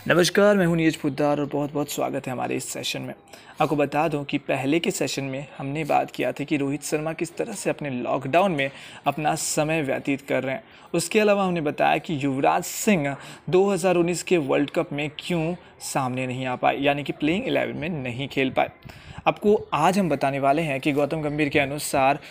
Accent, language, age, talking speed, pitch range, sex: native, Hindi, 30-49, 205 wpm, 145-185 Hz, male